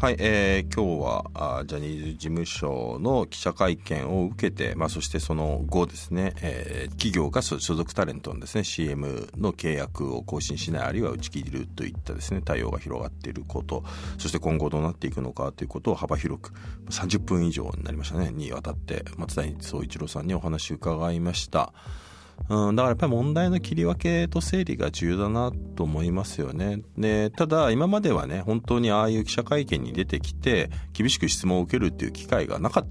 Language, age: Japanese, 40-59